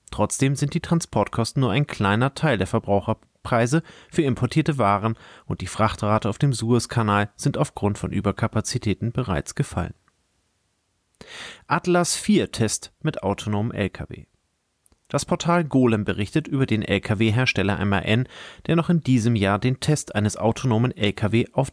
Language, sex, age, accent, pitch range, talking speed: German, male, 30-49, German, 105-140 Hz, 135 wpm